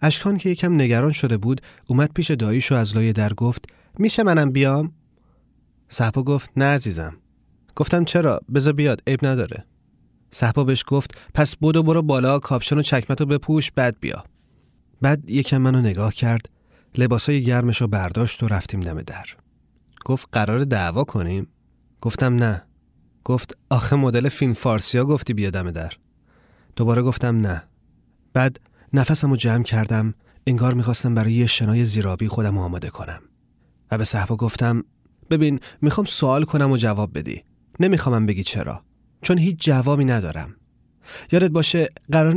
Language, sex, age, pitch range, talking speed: Persian, male, 30-49, 110-145 Hz, 150 wpm